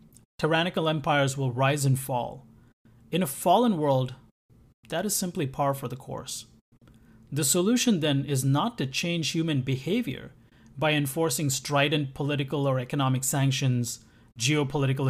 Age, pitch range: 30-49, 125-155 Hz